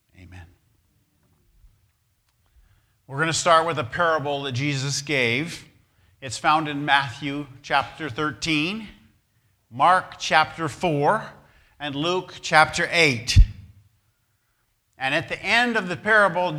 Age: 50-69